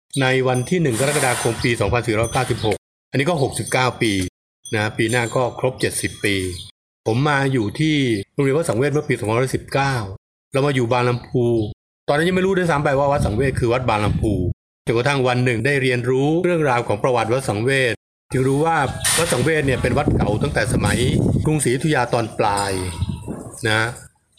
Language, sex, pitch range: Thai, male, 115-140 Hz